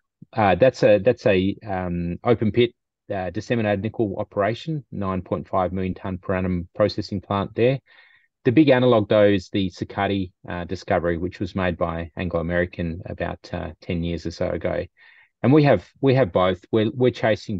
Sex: male